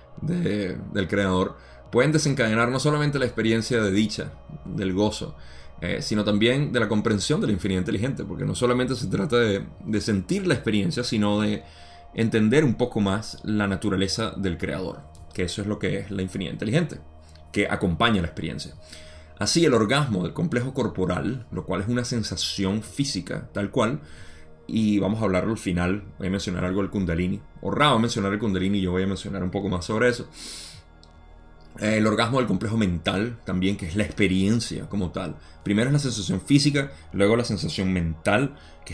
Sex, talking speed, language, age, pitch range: male, 180 wpm, Spanish, 30-49, 90-115 Hz